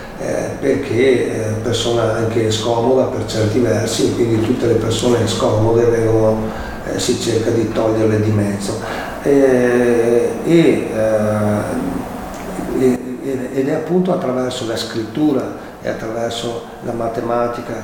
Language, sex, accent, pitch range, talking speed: Italian, male, native, 115-135 Hz, 130 wpm